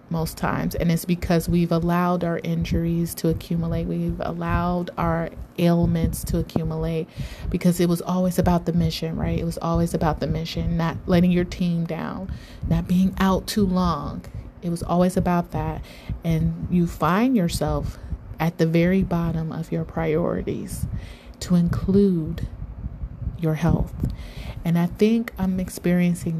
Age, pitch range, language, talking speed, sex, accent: 30-49, 165-180 Hz, English, 150 wpm, female, American